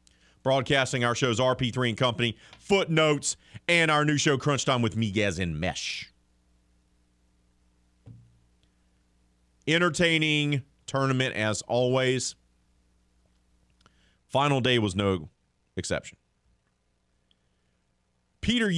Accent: American